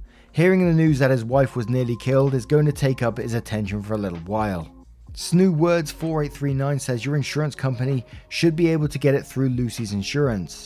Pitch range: 120-155 Hz